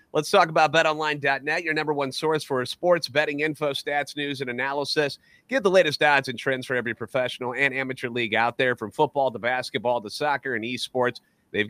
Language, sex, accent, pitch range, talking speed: English, male, American, 130-160 Hz, 200 wpm